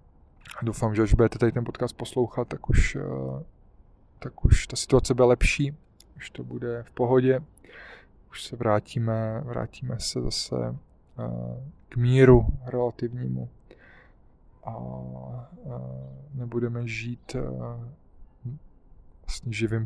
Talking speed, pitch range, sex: 110 wpm, 85-125 Hz, male